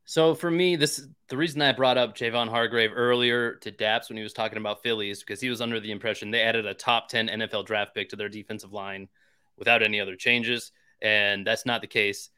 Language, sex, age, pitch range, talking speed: English, male, 30-49, 105-125 Hz, 230 wpm